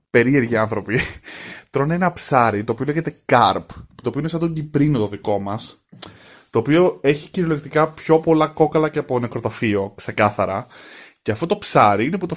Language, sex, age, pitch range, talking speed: Greek, male, 20-39, 110-145 Hz, 175 wpm